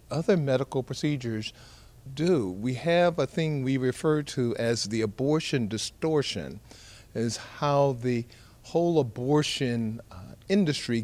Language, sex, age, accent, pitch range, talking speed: English, male, 50-69, American, 115-145 Hz, 120 wpm